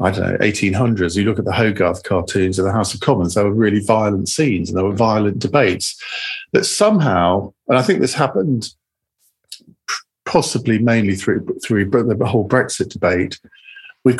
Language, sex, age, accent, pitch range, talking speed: English, male, 50-69, British, 110-140 Hz, 175 wpm